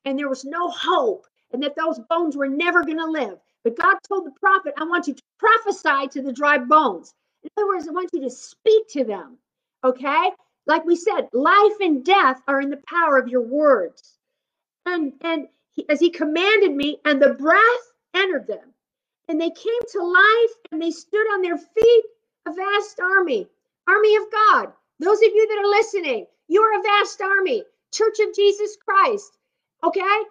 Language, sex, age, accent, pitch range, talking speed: English, female, 50-69, American, 315-410 Hz, 190 wpm